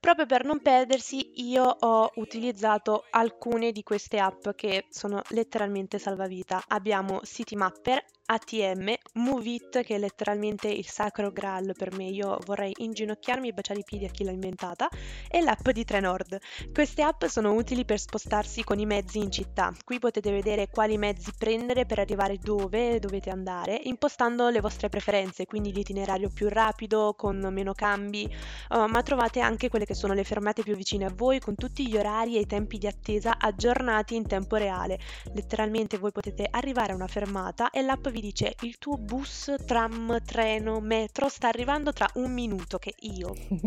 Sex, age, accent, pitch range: female, 20-39, native, 200-235 Hz